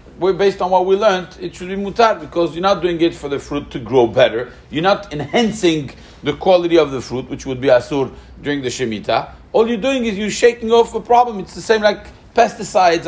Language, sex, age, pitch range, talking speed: English, male, 50-69, 120-180 Hz, 230 wpm